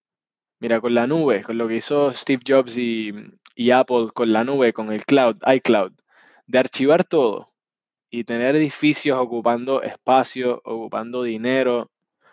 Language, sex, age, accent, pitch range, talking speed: Spanish, male, 20-39, Argentinian, 115-140 Hz, 145 wpm